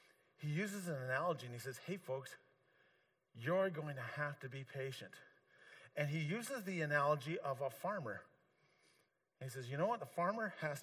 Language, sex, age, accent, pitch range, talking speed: English, male, 40-59, American, 160-240 Hz, 175 wpm